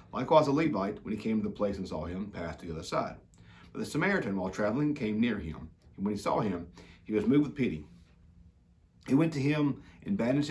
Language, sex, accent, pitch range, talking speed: English, male, American, 85-110 Hz, 235 wpm